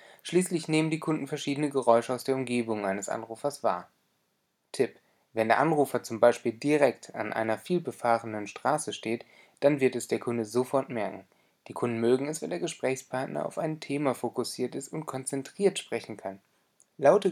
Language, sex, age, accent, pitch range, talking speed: German, male, 30-49, German, 115-150 Hz, 165 wpm